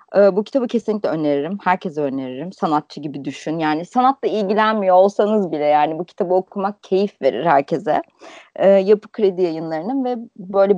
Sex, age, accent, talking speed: female, 30-49, native, 145 wpm